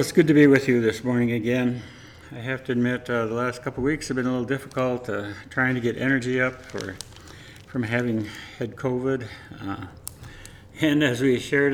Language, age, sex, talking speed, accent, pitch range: English, 60-79, male, 200 wpm, American, 110-135 Hz